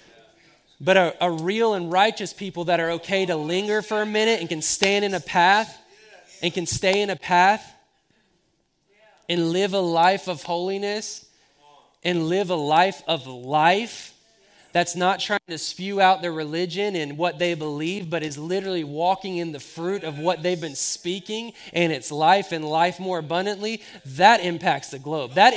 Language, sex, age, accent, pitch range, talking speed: English, male, 20-39, American, 165-195 Hz, 175 wpm